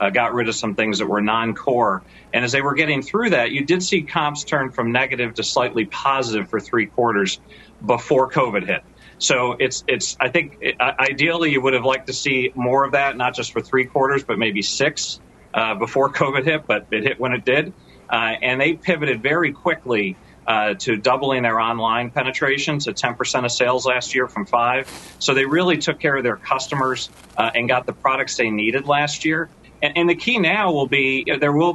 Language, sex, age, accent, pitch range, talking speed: English, male, 40-59, American, 115-150 Hz, 215 wpm